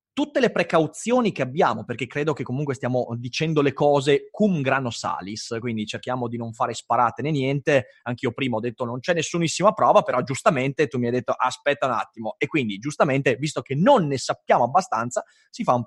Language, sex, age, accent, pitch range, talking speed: Italian, male, 30-49, native, 125-180 Hz, 200 wpm